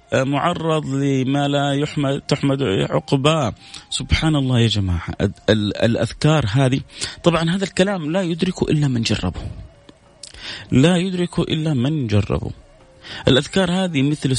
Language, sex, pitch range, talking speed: Arabic, male, 110-155 Hz, 125 wpm